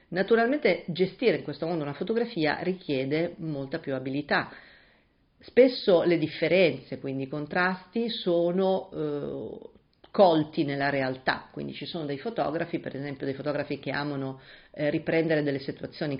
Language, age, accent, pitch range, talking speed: Italian, 40-59, native, 140-175 Hz, 135 wpm